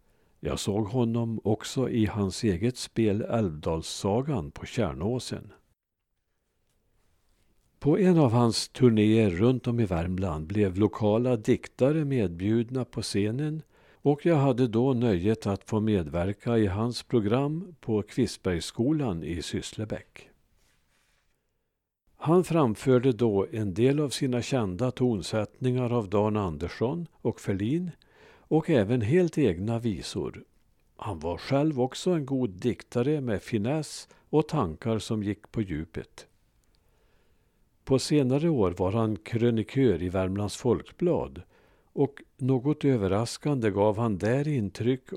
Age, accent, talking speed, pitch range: 50-69, Norwegian, 120 wpm, 105-130 Hz